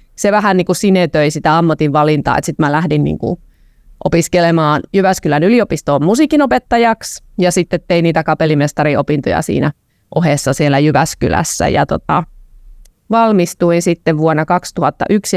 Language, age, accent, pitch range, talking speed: Finnish, 30-49, native, 150-185 Hz, 125 wpm